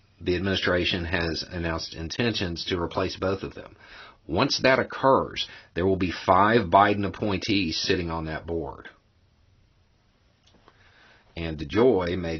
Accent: American